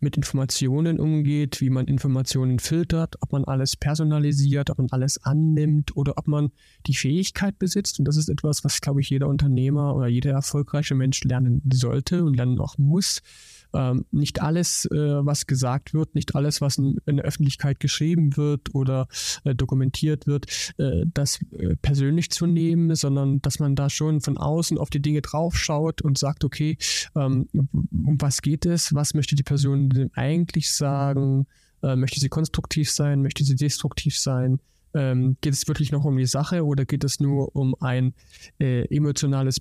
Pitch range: 130-150 Hz